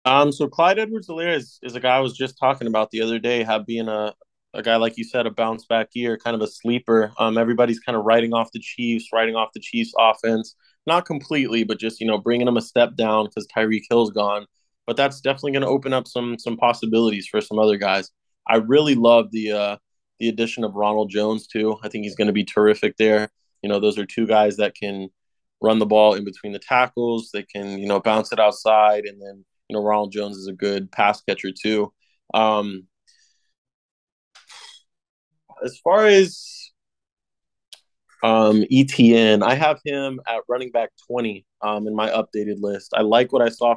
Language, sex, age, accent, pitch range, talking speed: English, male, 20-39, American, 105-120 Hz, 205 wpm